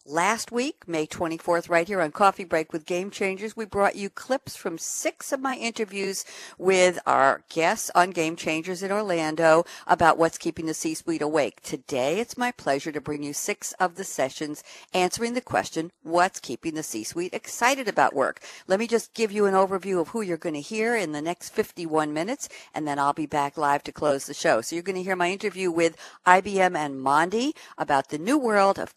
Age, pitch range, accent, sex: 60-79, 155-200 Hz, American, female